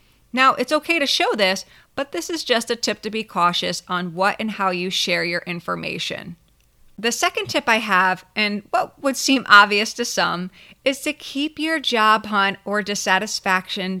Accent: American